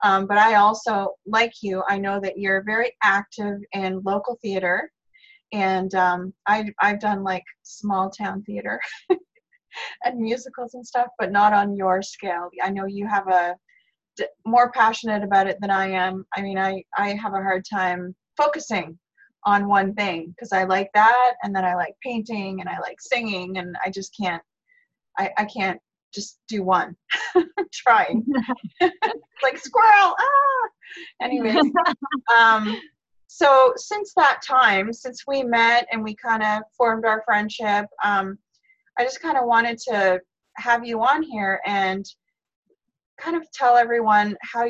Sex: female